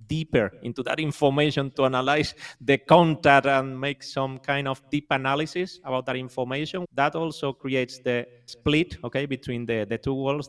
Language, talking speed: English, 165 wpm